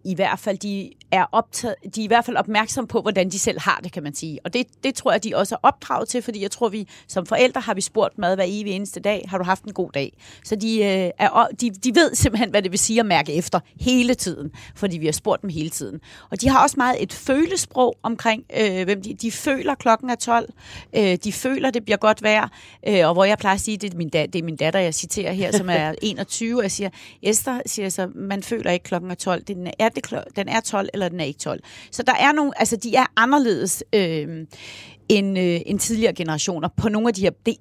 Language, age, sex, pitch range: Danish, 30-49, female, 185-235 Hz